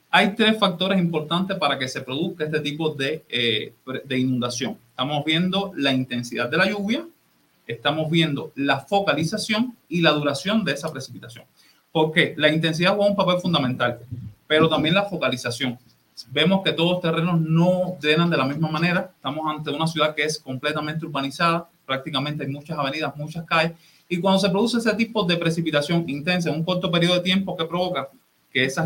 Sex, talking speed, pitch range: male, 180 wpm, 140-175 Hz